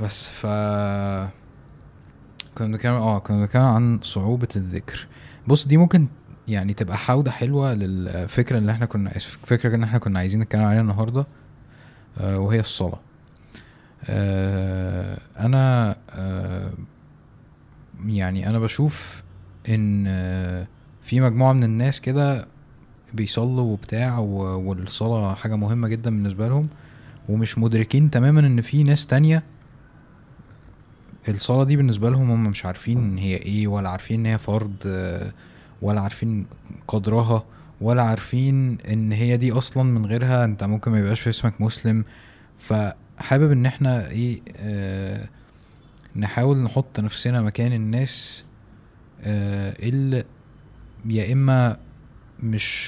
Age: 20-39